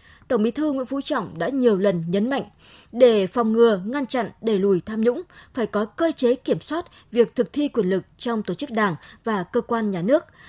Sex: female